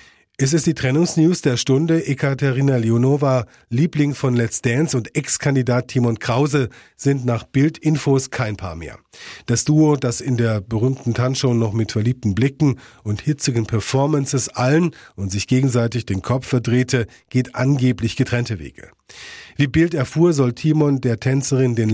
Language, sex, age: German, male, 40-59